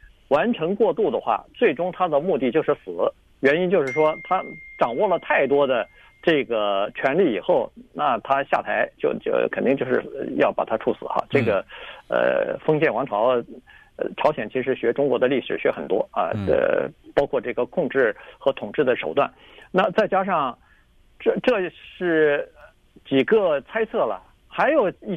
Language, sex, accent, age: Chinese, male, native, 50-69